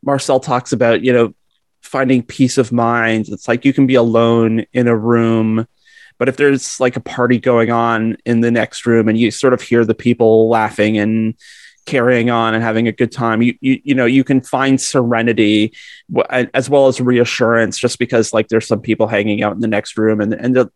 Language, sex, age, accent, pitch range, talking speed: English, male, 30-49, American, 115-135 Hz, 210 wpm